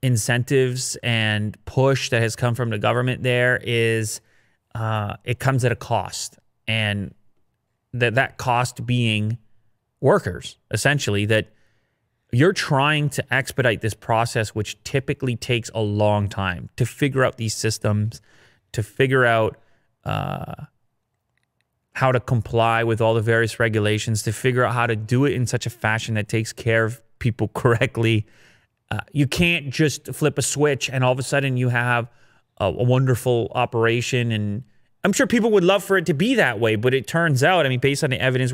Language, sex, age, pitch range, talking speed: English, male, 30-49, 115-135 Hz, 175 wpm